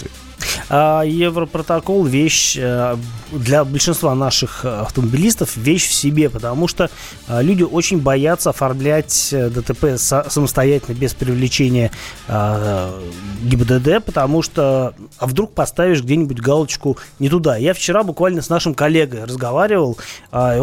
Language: Russian